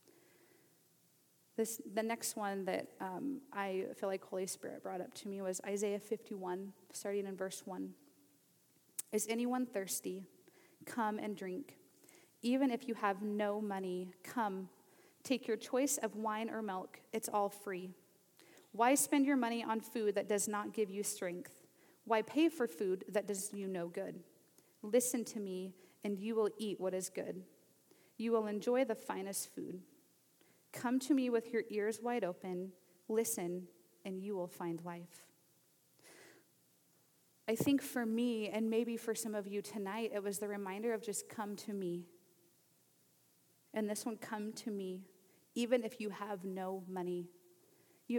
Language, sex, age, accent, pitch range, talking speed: English, female, 30-49, American, 190-225 Hz, 160 wpm